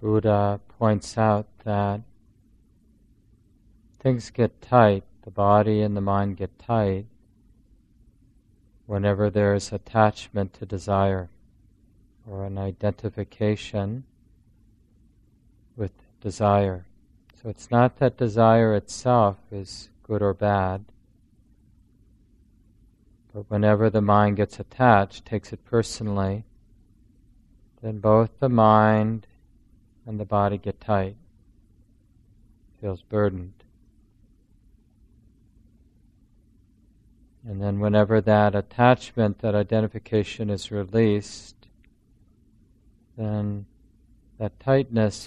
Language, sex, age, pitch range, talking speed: English, male, 40-59, 100-115 Hz, 90 wpm